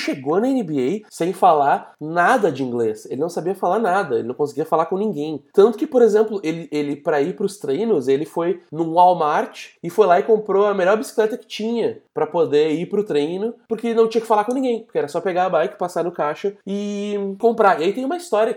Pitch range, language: 160-230 Hz, Portuguese